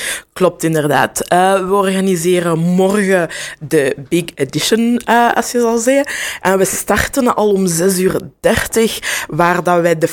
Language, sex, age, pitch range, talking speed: Dutch, female, 20-39, 160-180 Hz, 155 wpm